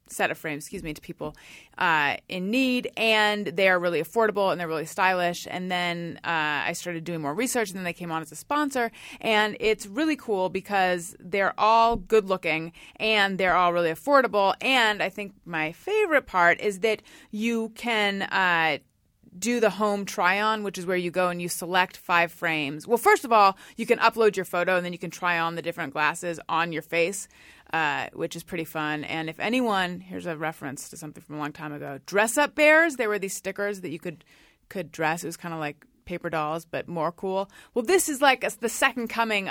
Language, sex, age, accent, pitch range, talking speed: English, female, 30-49, American, 175-230 Hz, 215 wpm